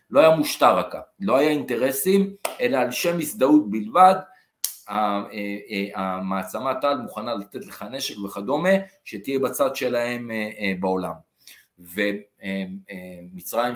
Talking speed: 100 wpm